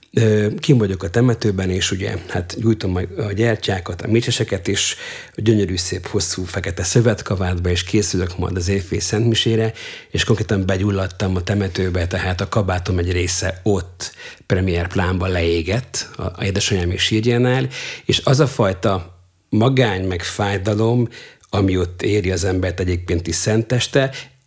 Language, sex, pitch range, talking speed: Hungarian, male, 95-115 Hz, 140 wpm